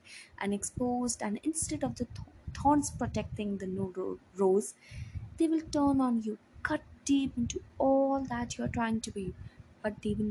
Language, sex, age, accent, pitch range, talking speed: English, female, 20-39, Indian, 200-245 Hz, 165 wpm